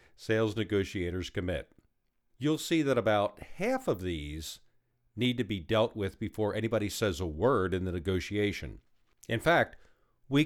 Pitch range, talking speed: 90-120 Hz, 150 wpm